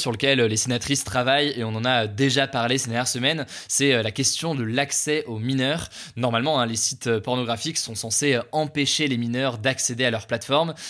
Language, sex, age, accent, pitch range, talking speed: French, male, 20-39, French, 115-140 Hz, 195 wpm